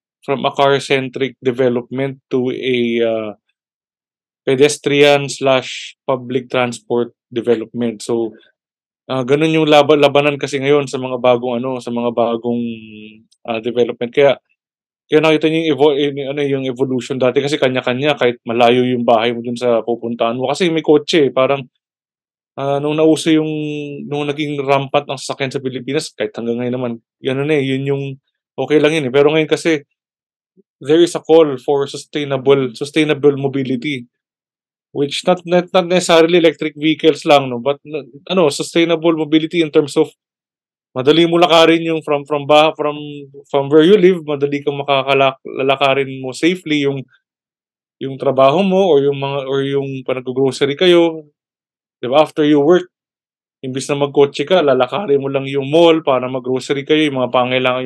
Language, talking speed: Filipino, 160 wpm